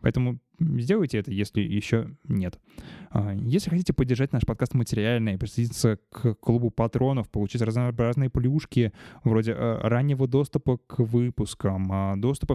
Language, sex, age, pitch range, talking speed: Russian, male, 20-39, 110-150 Hz, 120 wpm